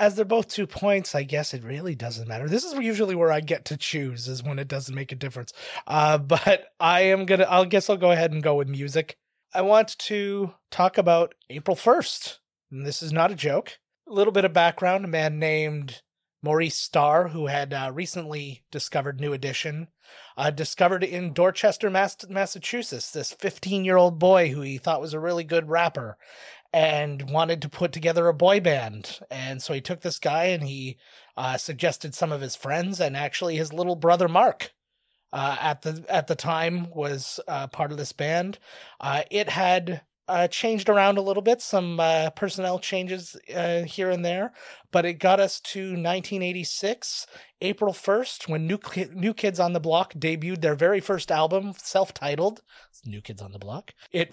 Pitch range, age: 150-190 Hz, 30-49